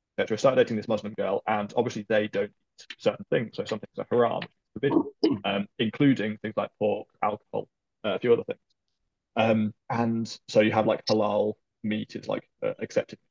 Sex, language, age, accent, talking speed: male, English, 20-39, British, 185 wpm